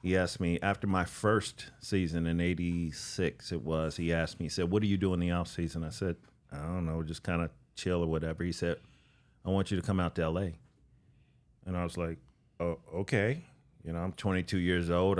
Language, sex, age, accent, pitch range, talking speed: English, male, 40-59, American, 85-100 Hz, 220 wpm